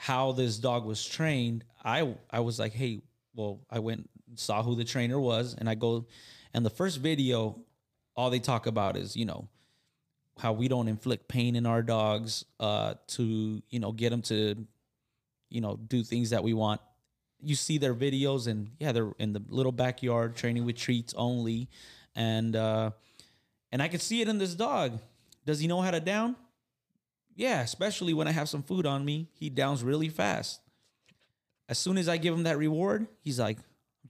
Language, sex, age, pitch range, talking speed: English, male, 20-39, 115-145 Hz, 190 wpm